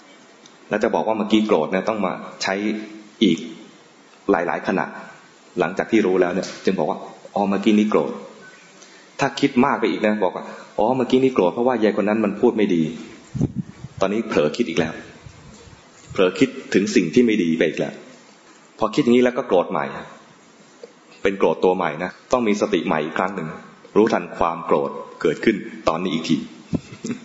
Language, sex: English, male